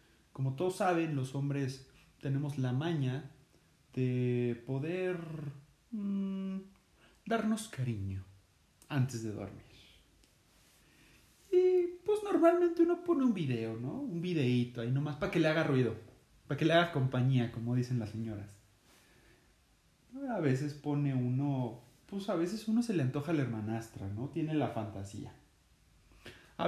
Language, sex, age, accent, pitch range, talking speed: Spanish, male, 30-49, Mexican, 115-165 Hz, 135 wpm